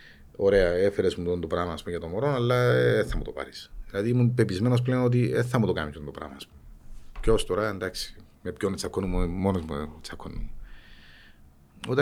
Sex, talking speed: male, 245 wpm